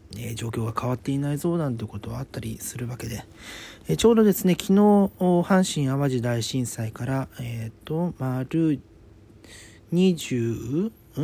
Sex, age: male, 40-59